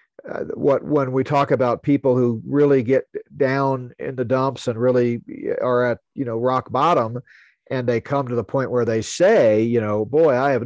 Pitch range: 115-140 Hz